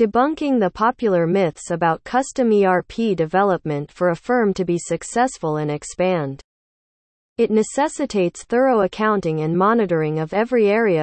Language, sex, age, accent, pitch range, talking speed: English, female, 40-59, American, 160-225 Hz, 135 wpm